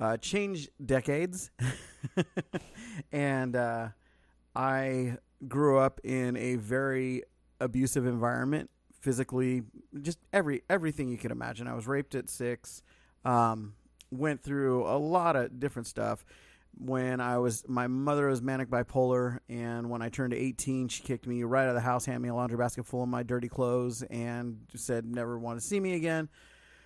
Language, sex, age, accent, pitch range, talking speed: English, male, 30-49, American, 125-150 Hz, 160 wpm